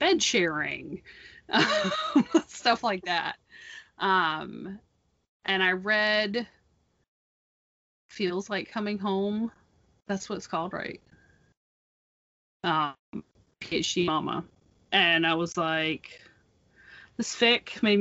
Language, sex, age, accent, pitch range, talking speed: English, female, 30-49, American, 170-230 Hz, 85 wpm